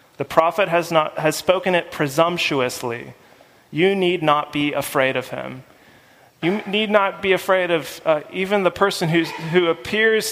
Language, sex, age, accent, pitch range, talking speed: English, male, 30-49, American, 160-205 Hz, 165 wpm